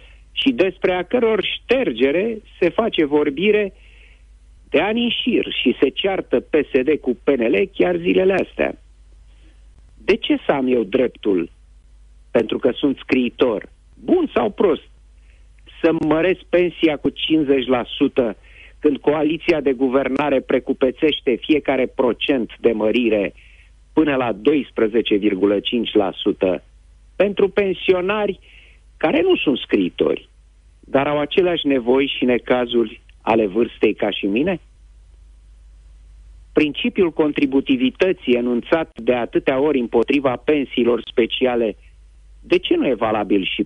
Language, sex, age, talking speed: Romanian, male, 50-69, 115 wpm